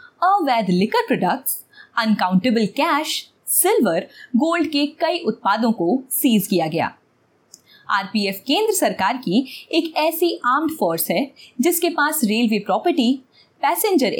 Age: 20-39